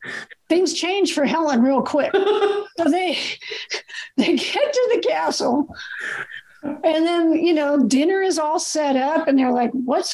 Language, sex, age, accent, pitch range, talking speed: English, female, 50-69, American, 265-355 Hz, 155 wpm